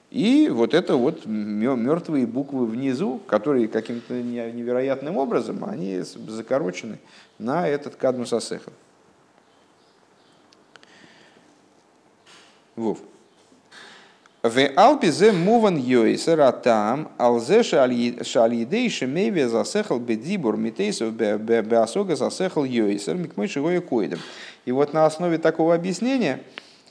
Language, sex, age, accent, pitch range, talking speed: Russian, male, 40-59, native, 105-155 Hz, 50 wpm